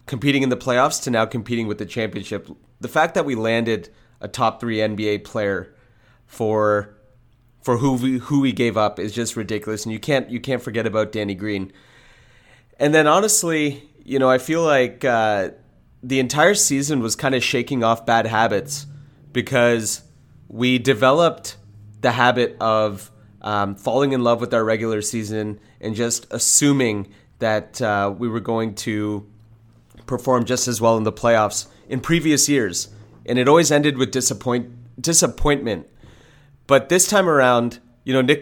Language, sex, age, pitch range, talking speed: English, male, 30-49, 110-135 Hz, 160 wpm